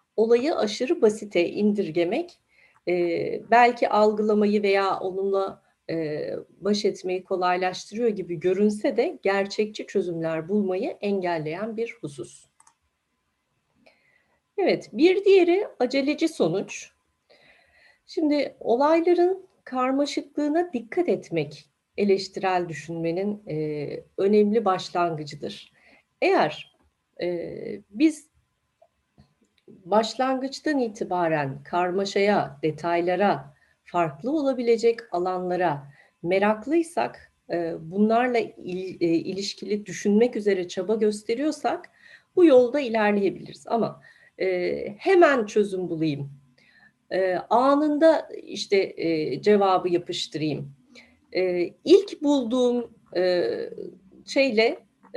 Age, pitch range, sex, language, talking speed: 40-59, 180-260 Hz, female, Turkish, 70 wpm